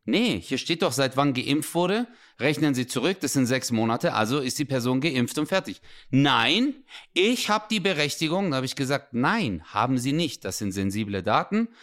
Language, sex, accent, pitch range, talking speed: English, male, German, 130-190 Hz, 200 wpm